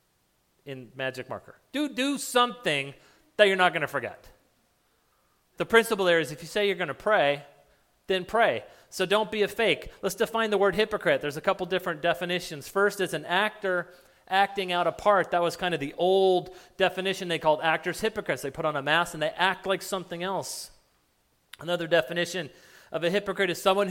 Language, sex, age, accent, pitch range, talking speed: English, male, 40-59, American, 155-200 Hz, 195 wpm